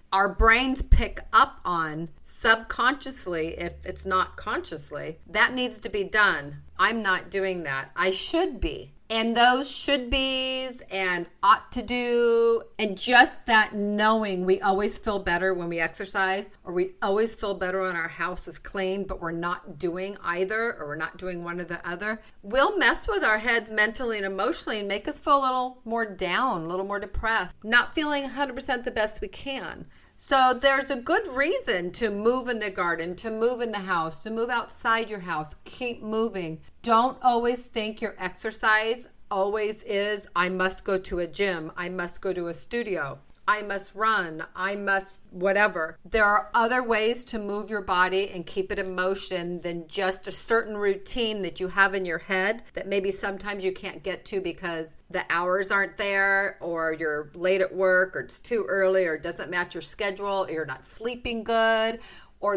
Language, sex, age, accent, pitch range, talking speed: English, female, 40-59, American, 185-225 Hz, 185 wpm